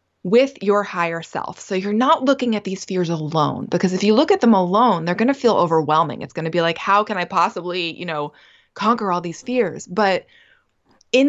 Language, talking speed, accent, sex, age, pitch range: English, 220 wpm, American, female, 20-39, 165-220 Hz